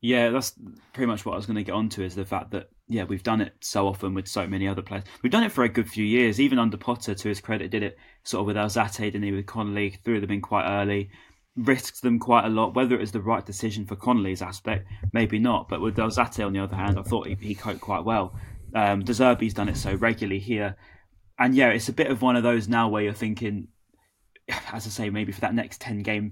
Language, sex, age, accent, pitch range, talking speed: English, male, 10-29, British, 100-115 Hz, 260 wpm